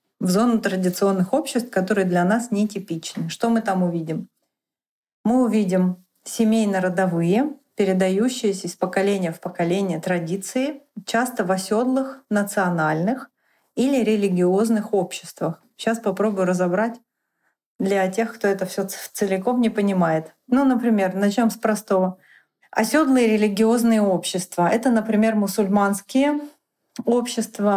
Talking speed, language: 110 wpm, Russian